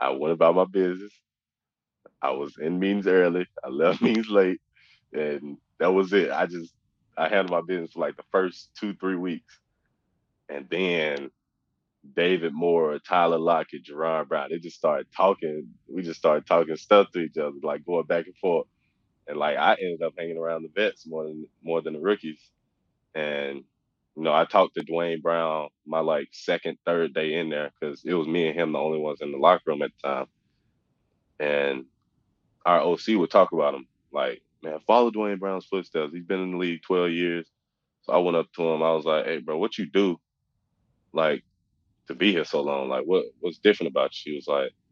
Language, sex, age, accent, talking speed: English, male, 20-39, American, 205 wpm